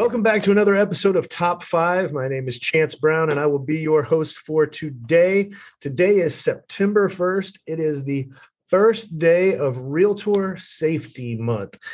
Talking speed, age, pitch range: 170 wpm, 40-59, 130-170 Hz